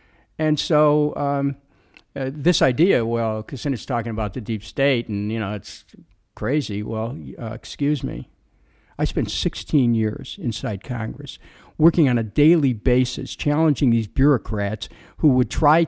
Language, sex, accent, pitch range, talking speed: English, male, American, 115-150 Hz, 140 wpm